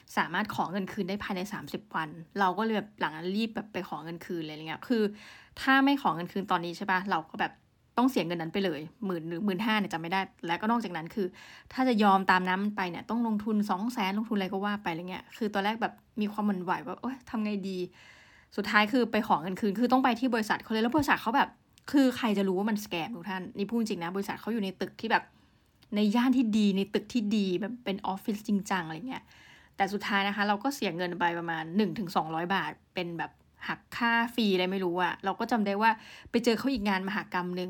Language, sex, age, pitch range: Thai, female, 20-39, 185-220 Hz